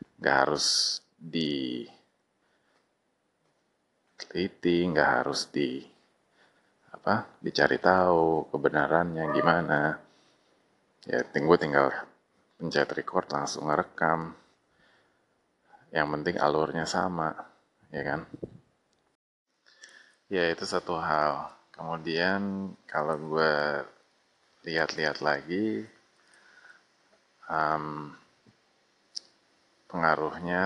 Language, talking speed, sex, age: Indonesian, 70 wpm, male, 30-49